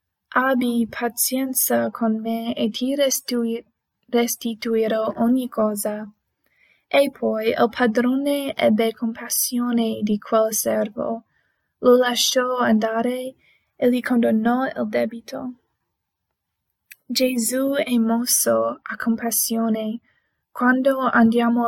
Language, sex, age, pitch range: Italian, female, 20-39, 220-245 Hz